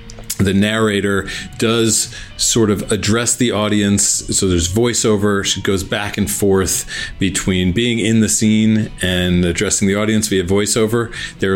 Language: English